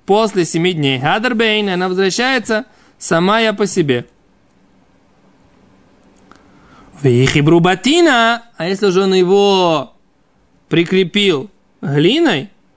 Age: 20-39